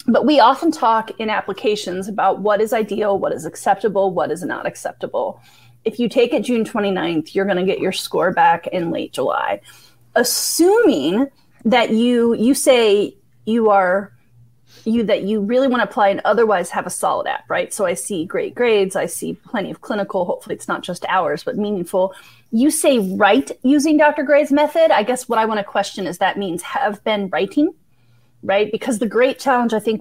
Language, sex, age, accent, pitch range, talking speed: English, female, 30-49, American, 195-260 Hz, 195 wpm